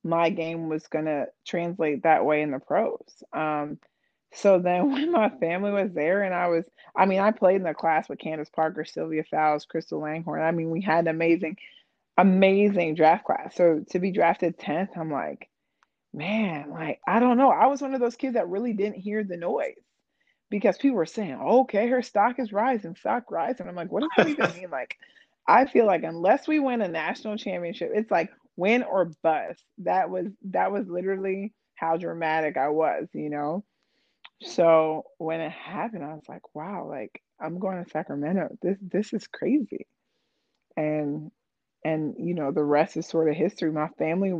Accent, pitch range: American, 155-200 Hz